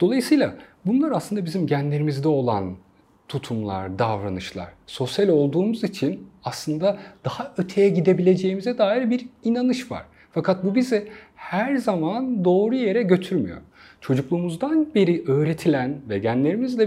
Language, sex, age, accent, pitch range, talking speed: Turkish, male, 40-59, native, 125-205 Hz, 115 wpm